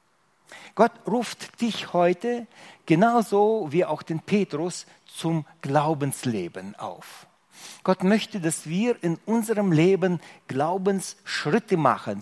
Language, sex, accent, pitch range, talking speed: German, male, German, 135-190 Hz, 105 wpm